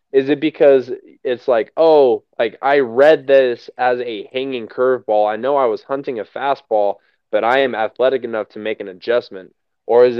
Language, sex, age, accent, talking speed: English, male, 20-39, American, 190 wpm